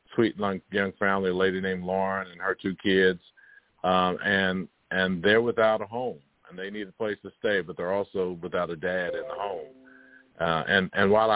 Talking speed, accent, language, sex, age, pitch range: 200 wpm, American, English, male, 50-69, 95-105 Hz